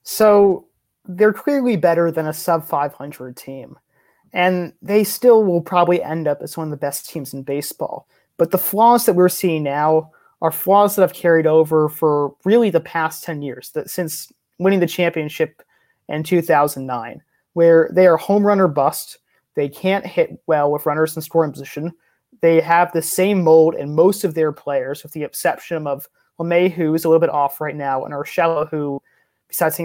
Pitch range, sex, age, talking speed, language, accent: 150-180 Hz, male, 30-49, 185 wpm, English, American